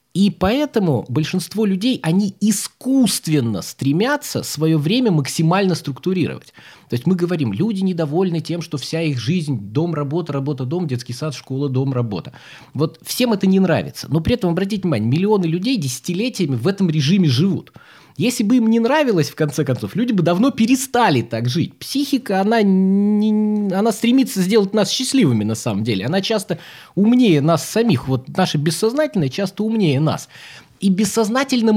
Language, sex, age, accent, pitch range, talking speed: Russian, male, 20-39, native, 145-210 Hz, 160 wpm